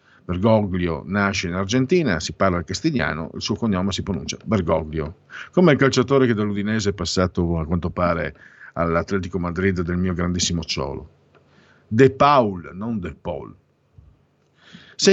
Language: Italian